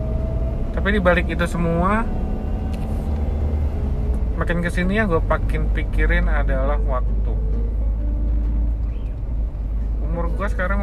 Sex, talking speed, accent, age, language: male, 85 wpm, native, 30-49, Indonesian